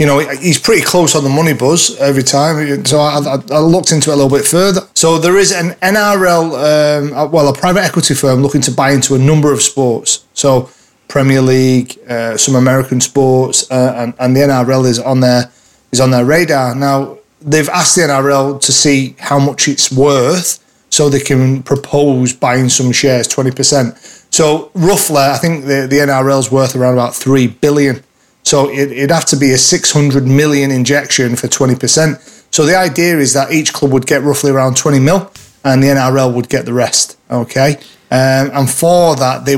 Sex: male